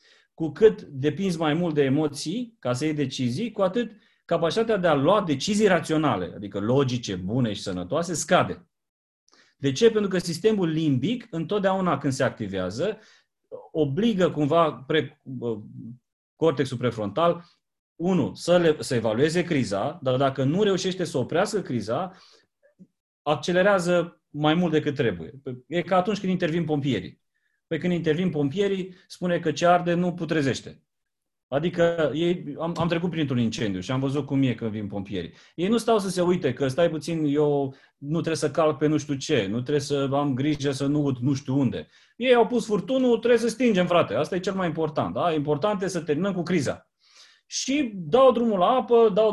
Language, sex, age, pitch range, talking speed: Romanian, male, 30-49, 140-190 Hz, 175 wpm